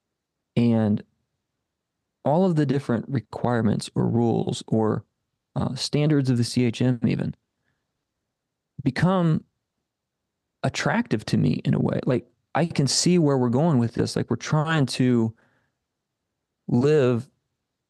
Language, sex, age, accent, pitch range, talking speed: English, male, 30-49, American, 115-140 Hz, 120 wpm